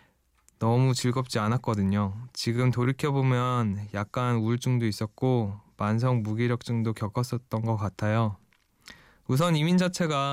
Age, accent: 20-39, native